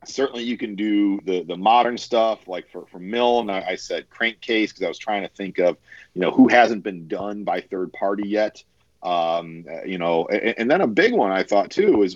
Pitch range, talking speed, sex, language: 95-120 Hz, 225 wpm, male, English